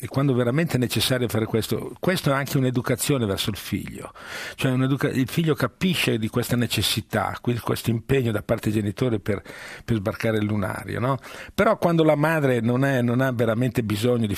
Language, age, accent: Italian, 50-69, native